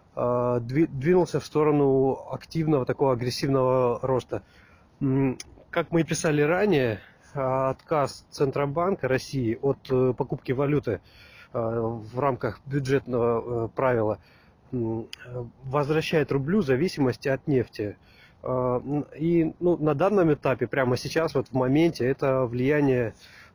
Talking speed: 100 wpm